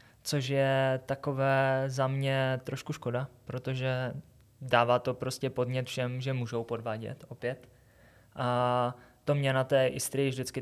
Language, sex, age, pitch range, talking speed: Czech, male, 20-39, 125-135 Hz, 135 wpm